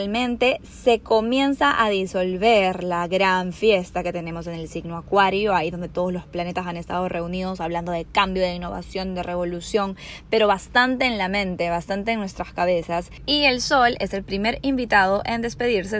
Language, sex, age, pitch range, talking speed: Spanish, female, 10-29, 180-230 Hz, 175 wpm